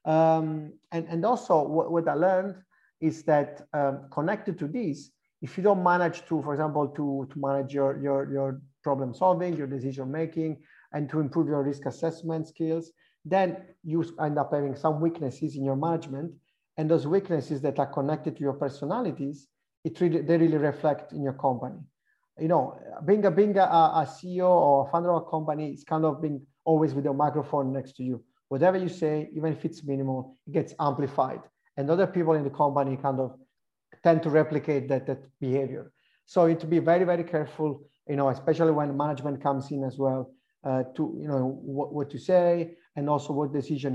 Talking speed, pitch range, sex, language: 195 wpm, 140-165 Hz, male, English